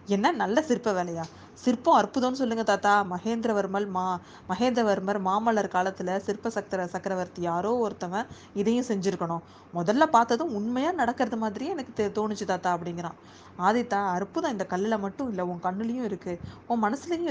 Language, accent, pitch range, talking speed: Tamil, native, 185-255 Hz, 140 wpm